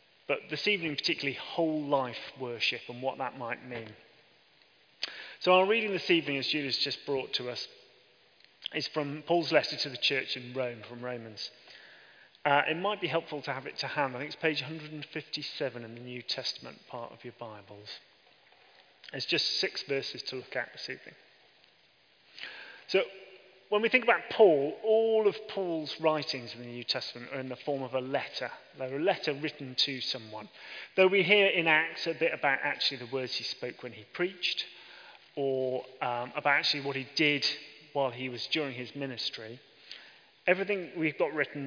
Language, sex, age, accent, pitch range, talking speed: English, male, 30-49, British, 125-160 Hz, 180 wpm